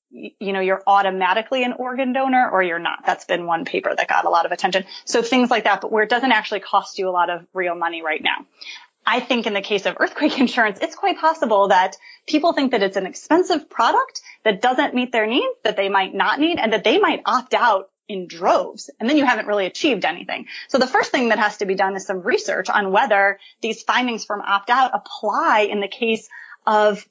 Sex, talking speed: female, 235 wpm